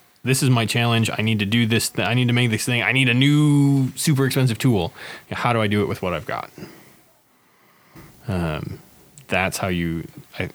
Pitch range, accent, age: 90-110 Hz, American, 20-39